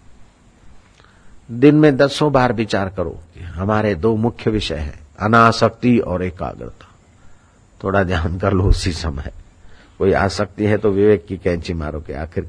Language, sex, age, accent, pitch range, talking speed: Hindi, male, 50-69, native, 90-115 Hz, 145 wpm